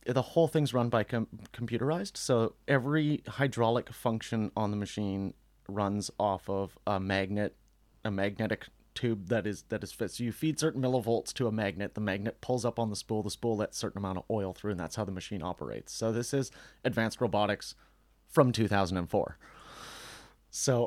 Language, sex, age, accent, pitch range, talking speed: English, male, 30-49, American, 100-120 Hz, 180 wpm